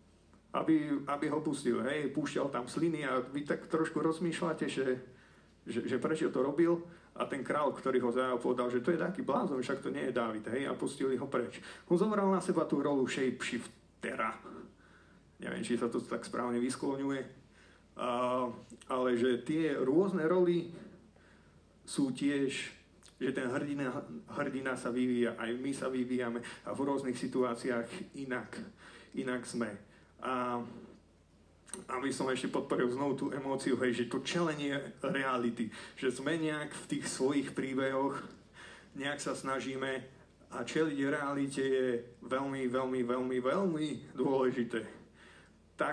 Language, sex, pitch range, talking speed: Slovak, male, 125-160 Hz, 145 wpm